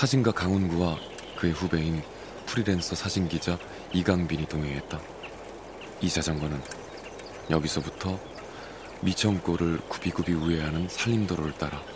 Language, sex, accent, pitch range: Korean, male, native, 80-95 Hz